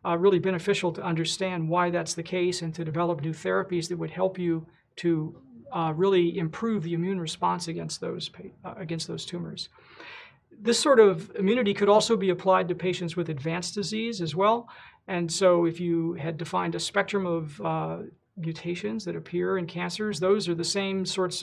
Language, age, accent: English, 40-59, American